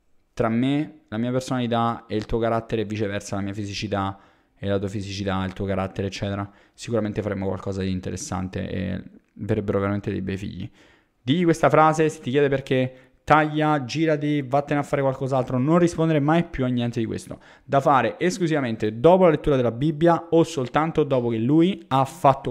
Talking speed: 185 wpm